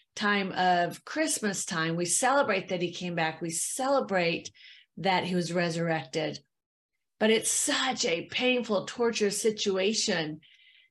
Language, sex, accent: English, female, American